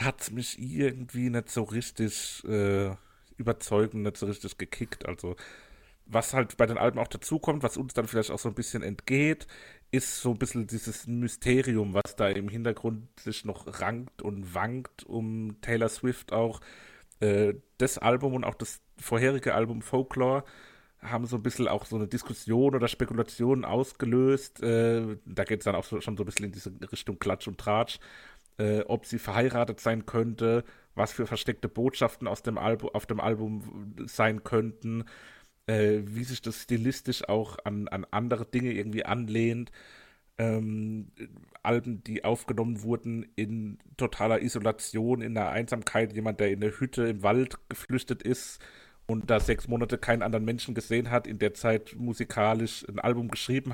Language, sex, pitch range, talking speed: German, male, 105-120 Hz, 170 wpm